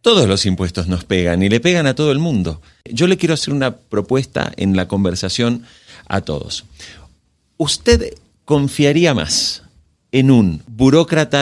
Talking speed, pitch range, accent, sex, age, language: 150 wpm, 105-150 Hz, Argentinian, male, 40-59, Spanish